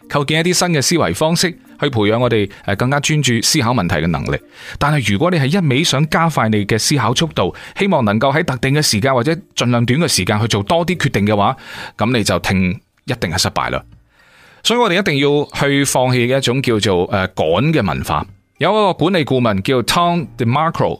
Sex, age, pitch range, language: male, 30-49, 105-145 Hz, Chinese